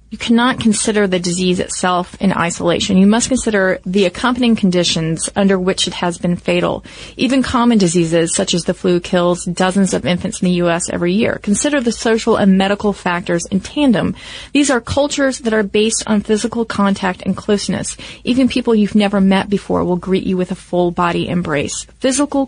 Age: 30-49